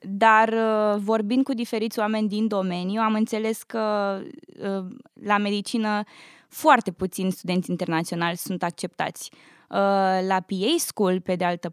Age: 20-39